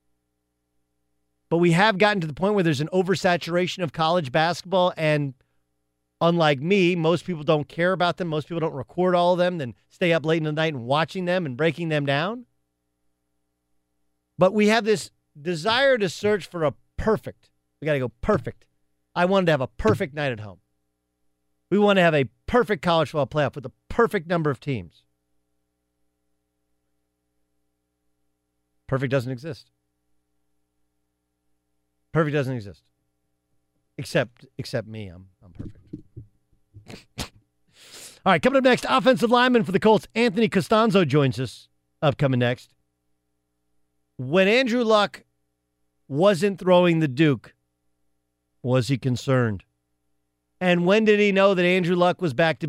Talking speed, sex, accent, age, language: 150 wpm, male, American, 40-59, English